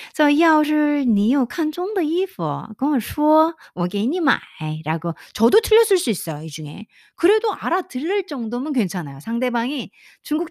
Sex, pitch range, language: female, 175-265 Hz, Korean